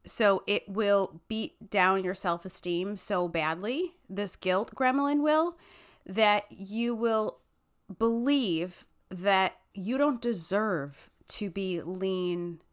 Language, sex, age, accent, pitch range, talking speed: English, female, 30-49, American, 180-235 Hz, 115 wpm